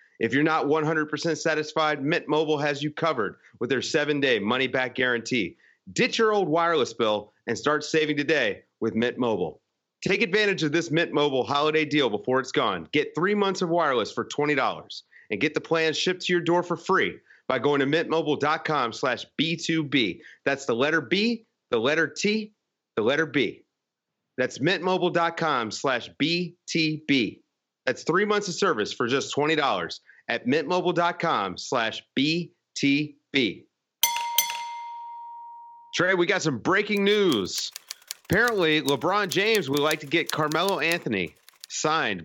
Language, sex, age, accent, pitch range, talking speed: English, male, 30-49, American, 140-180 Hz, 145 wpm